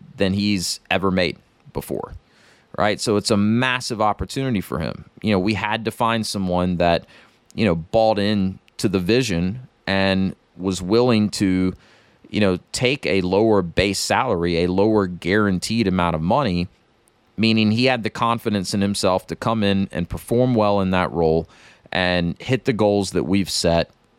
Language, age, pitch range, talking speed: English, 30-49, 90-110 Hz, 170 wpm